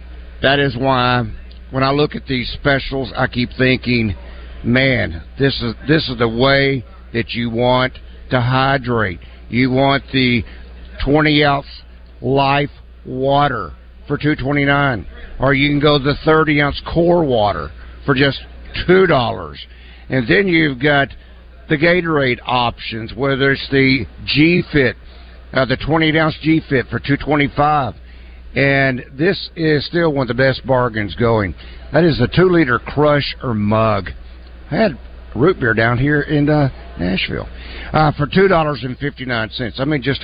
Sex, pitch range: male, 105-145 Hz